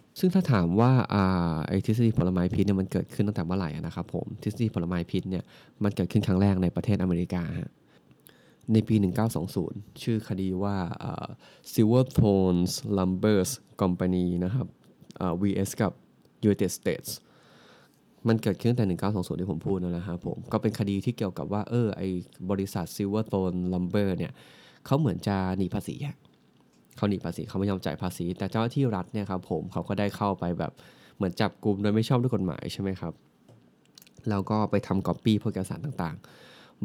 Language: Thai